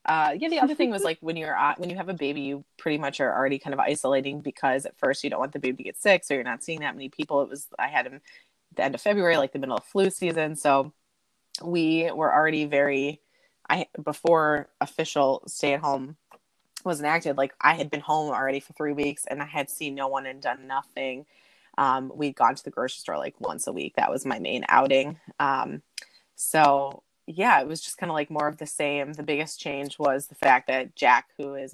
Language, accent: English, American